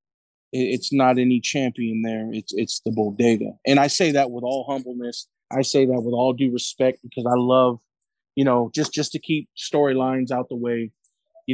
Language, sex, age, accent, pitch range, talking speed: English, male, 30-49, American, 120-135 Hz, 190 wpm